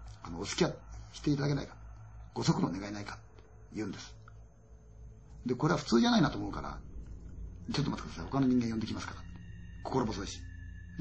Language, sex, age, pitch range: Chinese, male, 40-59, 100-130 Hz